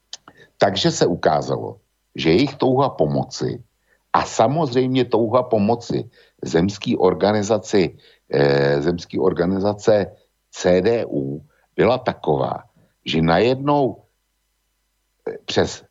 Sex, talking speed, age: male, 70 wpm, 60-79